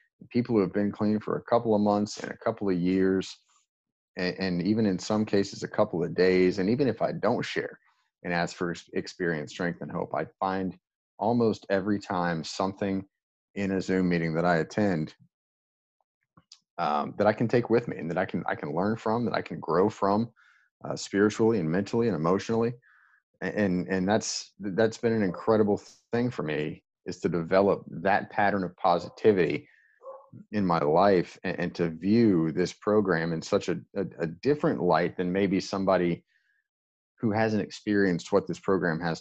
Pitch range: 85-105 Hz